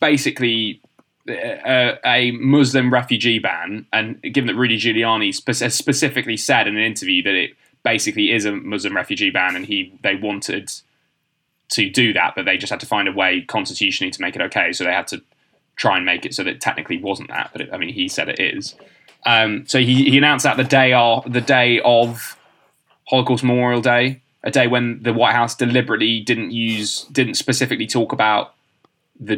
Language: English